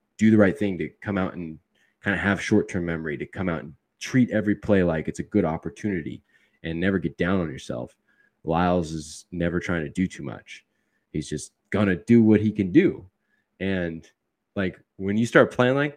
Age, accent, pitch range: 20-39, American, 90-130 Hz